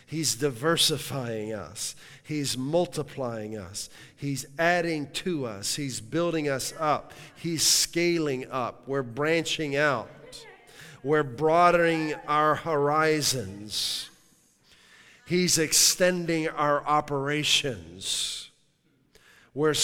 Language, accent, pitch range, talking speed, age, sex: English, American, 135-160 Hz, 90 wpm, 50-69, male